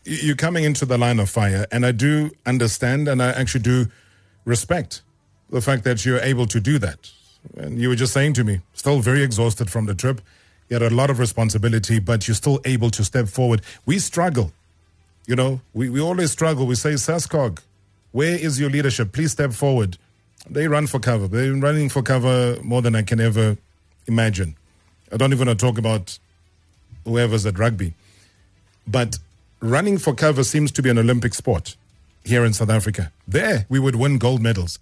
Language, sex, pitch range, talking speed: English, male, 110-140 Hz, 195 wpm